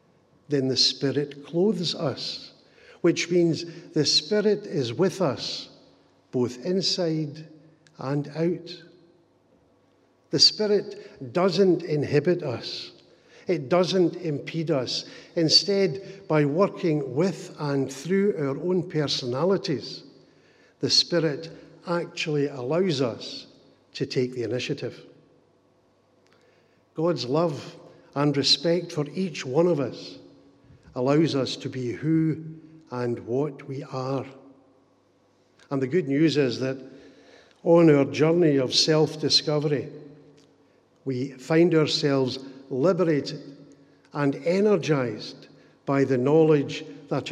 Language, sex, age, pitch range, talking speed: English, male, 60-79, 135-170 Hz, 105 wpm